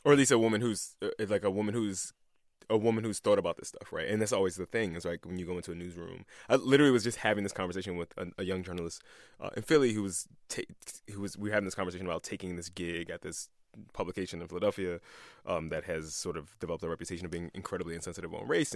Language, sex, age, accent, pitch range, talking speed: English, male, 20-39, American, 90-105 Hz, 255 wpm